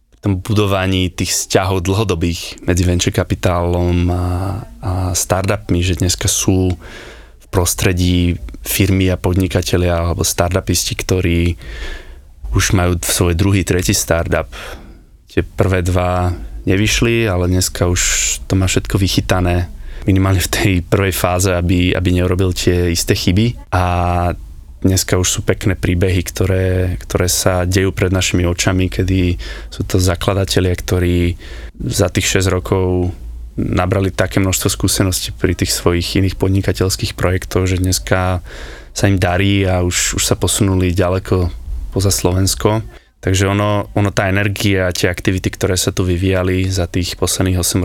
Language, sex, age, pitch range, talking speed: Slovak, male, 20-39, 90-100 Hz, 140 wpm